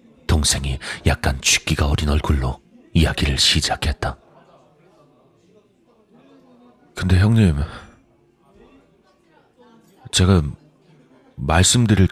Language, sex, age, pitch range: Korean, male, 40-59, 75-95 Hz